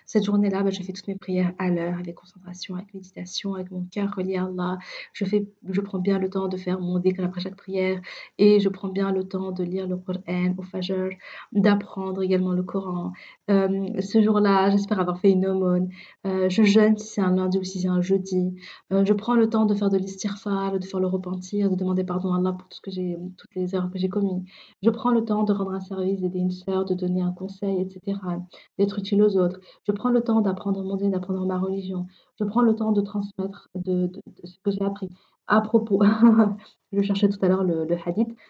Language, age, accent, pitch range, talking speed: French, 30-49, French, 185-205 Hz, 240 wpm